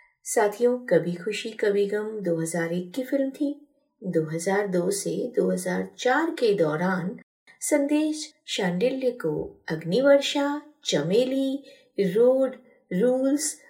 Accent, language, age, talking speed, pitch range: native, Hindi, 50-69, 90 wpm, 185-280 Hz